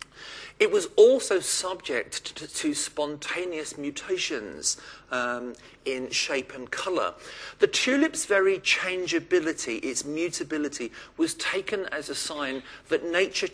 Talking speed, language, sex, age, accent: 115 wpm, English, male, 50-69, British